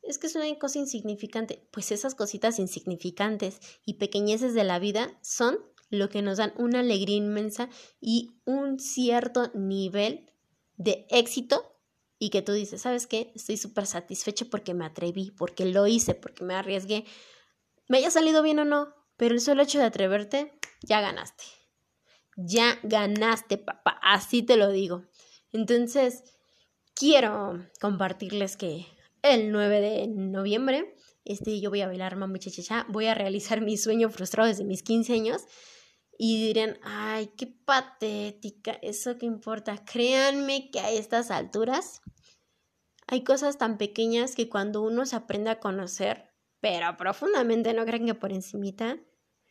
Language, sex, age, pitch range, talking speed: Spanish, female, 20-39, 200-240 Hz, 150 wpm